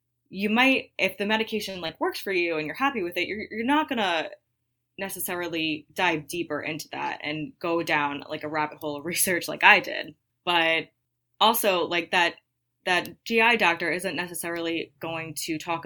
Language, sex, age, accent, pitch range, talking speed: English, female, 20-39, American, 150-180 Hz, 180 wpm